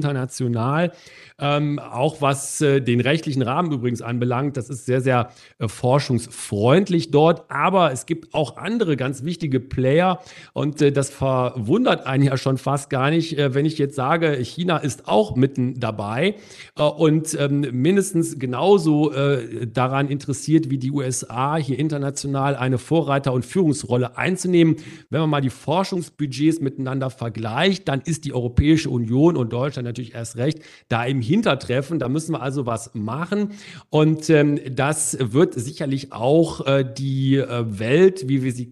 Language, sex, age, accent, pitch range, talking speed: German, male, 40-59, German, 125-155 Hz, 160 wpm